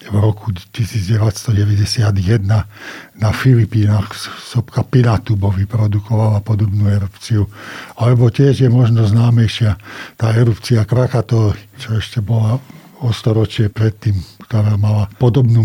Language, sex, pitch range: Slovak, male, 110-130 Hz